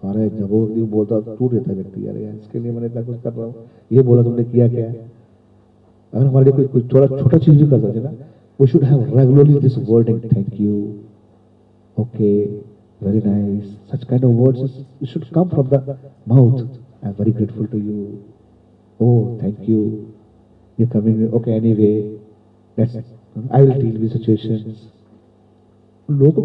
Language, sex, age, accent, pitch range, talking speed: Hindi, male, 40-59, native, 110-130 Hz, 170 wpm